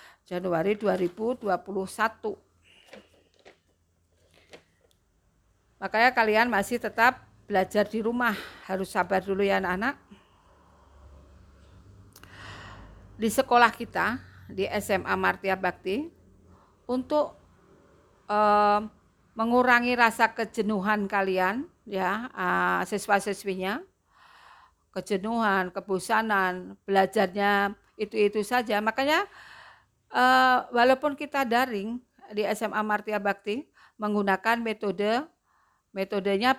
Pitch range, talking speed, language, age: 190-235 Hz, 75 wpm, Indonesian, 50-69